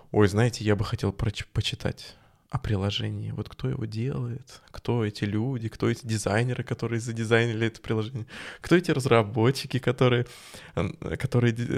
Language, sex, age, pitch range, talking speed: Russian, male, 20-39, 105-135 Hz, 140 wpm